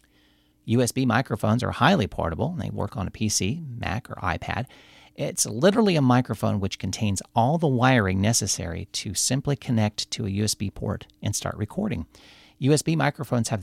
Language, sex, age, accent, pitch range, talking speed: English, male, 40-59, American, 100-120 Hz, 160 wpm